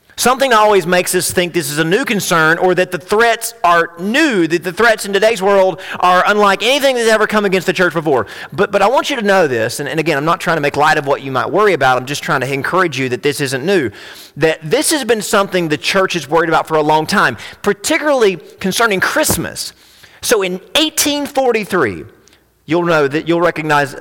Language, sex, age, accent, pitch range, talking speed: English, male, 30-49, American, 155-200 Hz, 225 wpm